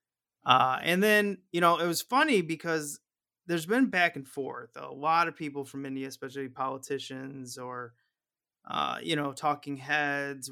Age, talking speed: 30-49, 160 wpm